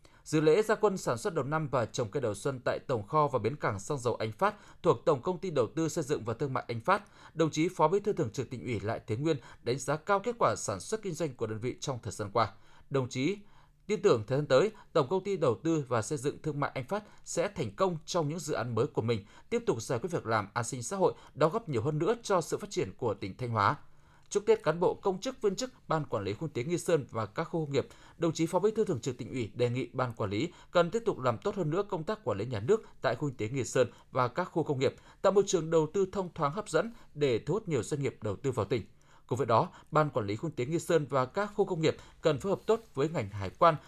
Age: 20-39